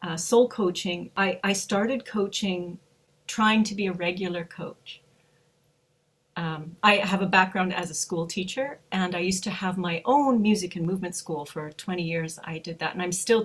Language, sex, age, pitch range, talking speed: English, female, 40-59, 165-195 Hz, 185 wpm